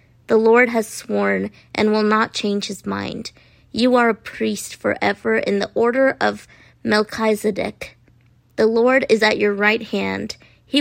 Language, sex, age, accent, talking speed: English, female, 30-49, American, 155 wpm